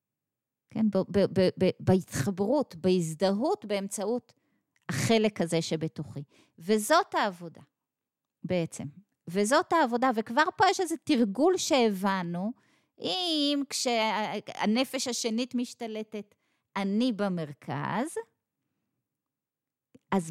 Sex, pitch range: female, 195-295 Hz